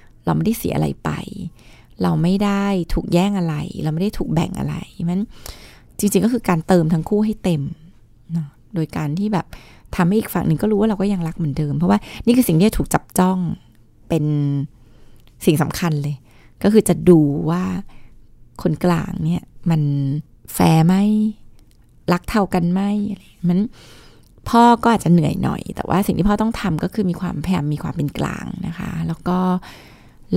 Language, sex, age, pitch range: Thai, female, 20-39, 160-200 Hz